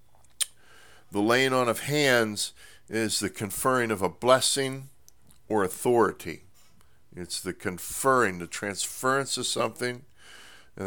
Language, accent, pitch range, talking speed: English, American, 95-125 Hz, 115 wpm